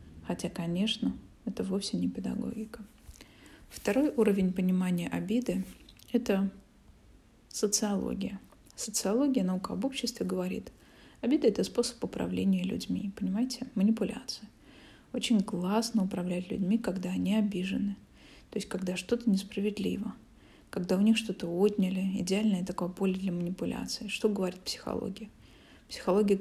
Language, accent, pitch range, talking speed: Russian, native, 185-220 Hz, 115 wpm